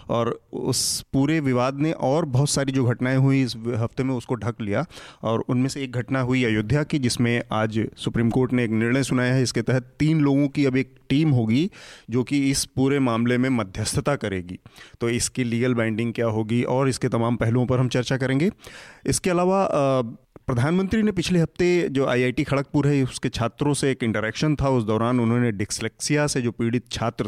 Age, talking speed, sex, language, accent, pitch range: 30-49, 200 wpm, male, Hindi, native, 115-140 Hz